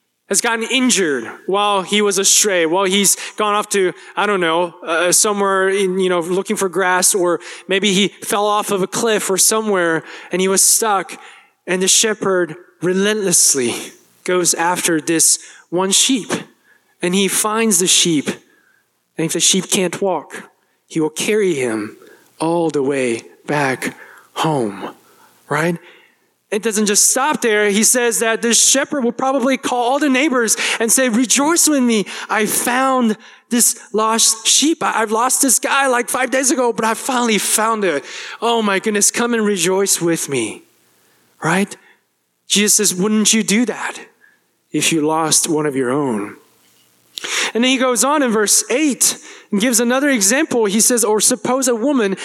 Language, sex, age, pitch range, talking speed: English, male, 20-39, 185-235 Hz, 165 wpm